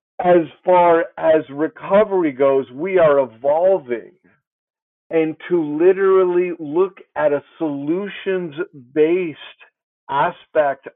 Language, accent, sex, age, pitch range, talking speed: English, American, male, 50-69, 150-195 Hz, 90 wpm